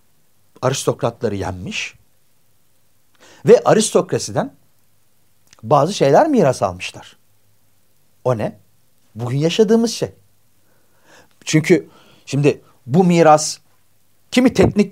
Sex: male